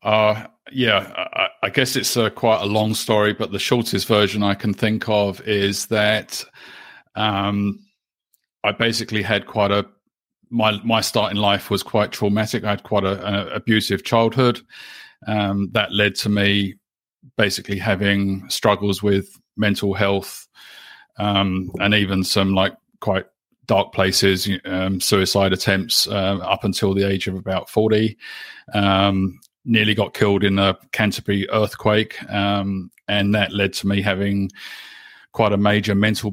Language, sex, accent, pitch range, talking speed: English, male, British, 100-110 Hz, 150 wpm